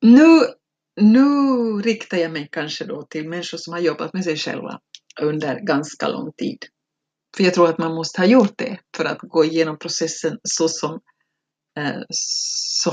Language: Swedish